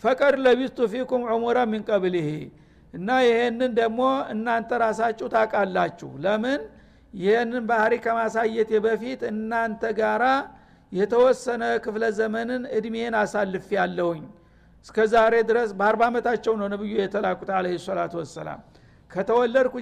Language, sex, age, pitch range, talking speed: Amharic, male, 60-79, 215-240 Hz, 110 wpm